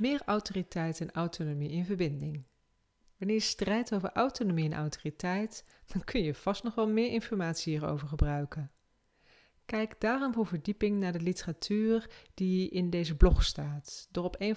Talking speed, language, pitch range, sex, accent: 155 wpm, Dutch, 155-210 Hz, female, Dutch